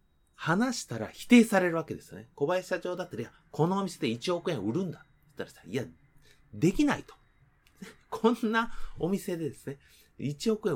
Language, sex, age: Japanese, male, 30-49